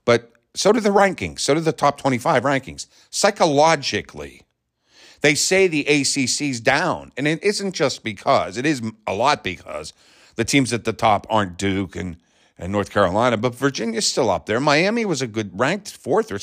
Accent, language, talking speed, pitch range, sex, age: American, English, 180 wpm, 110-145 Hz, male, 50-69